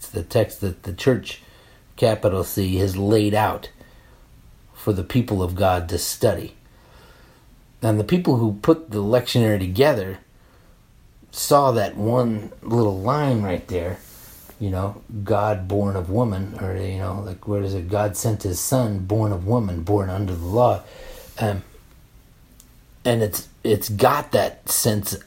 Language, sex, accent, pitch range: English, male, American, 100-125 Hz